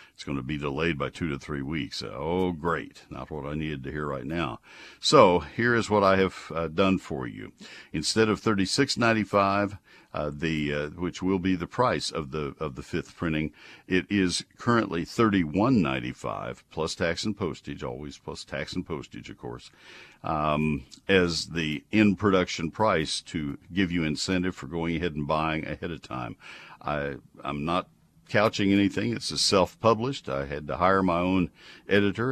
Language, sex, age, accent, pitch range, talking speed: English, male, 60-79, American, 80-100 Hz, 175 wpm